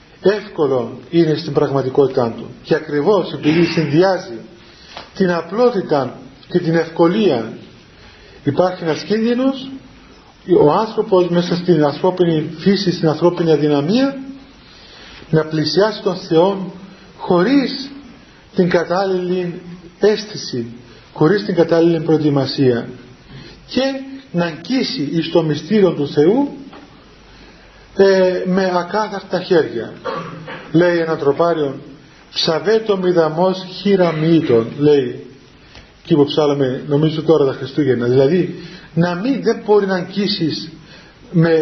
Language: Greek